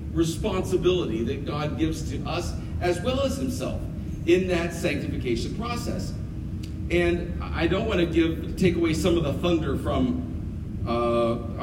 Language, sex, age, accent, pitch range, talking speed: English, male, 40-59, American, 95-155 Hz, 145 wpm